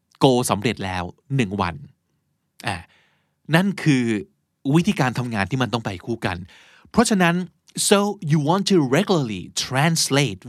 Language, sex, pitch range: Thai, male, 115-155 Hz